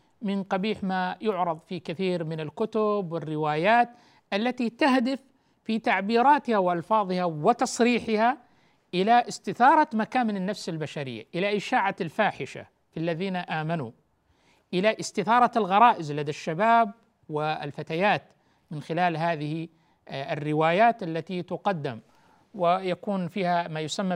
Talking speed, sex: 105 wpm, male